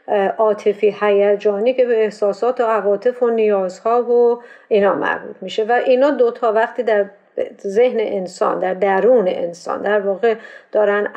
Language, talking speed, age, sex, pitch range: Persian, 140 wpm, 50-69, female, 215-265 Hz